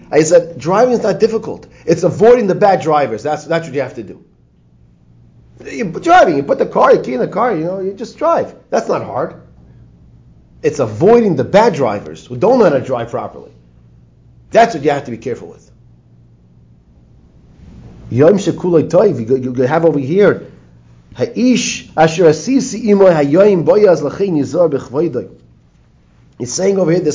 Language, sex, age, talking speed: English, male, 40-59, 145 wpm